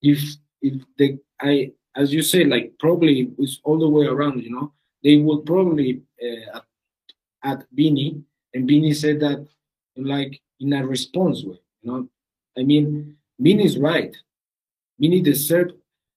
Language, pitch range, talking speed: English, 130-160 Hz, 155 wpm